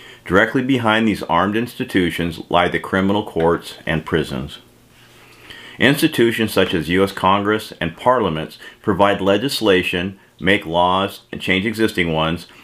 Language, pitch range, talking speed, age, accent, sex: English, 90-105 Hz, 125 wpm, 40-59, American, male